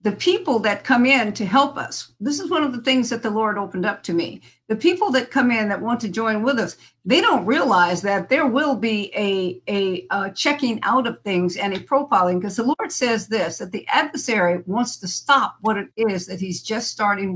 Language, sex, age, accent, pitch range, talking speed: English, female, 50-69, American, 185-235 Hz, 230 wpm